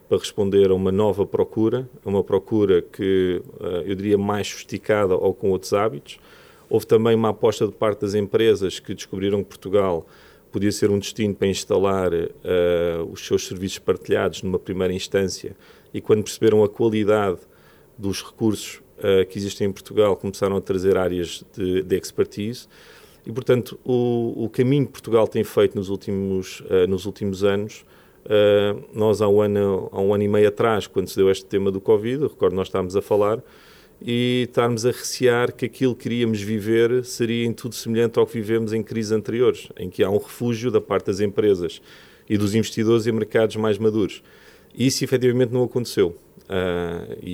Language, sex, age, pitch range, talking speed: Portuguese, male, 40-59, 95-115 Hz, 180 wpm